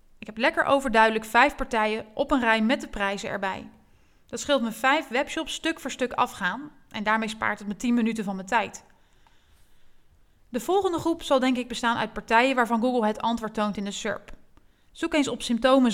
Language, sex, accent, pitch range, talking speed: Dutch, female, Dutch, 210-275 Hz, 200 wpm